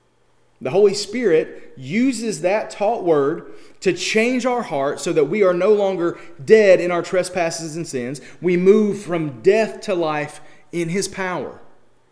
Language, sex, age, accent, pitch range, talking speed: English, male, 30-49, American, 135-190 Hz, 160 wpm